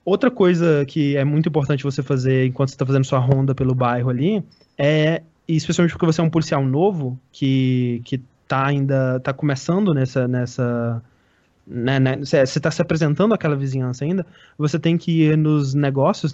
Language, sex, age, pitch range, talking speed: Portuguese, male, 20-39, 135-165 Hz, 175 wpm